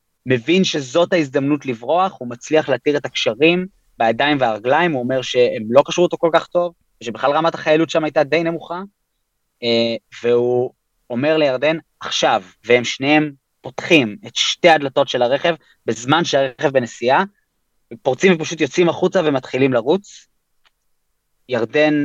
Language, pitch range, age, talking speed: Hebrew, 130-170 Hz, 30-49, 135 wpm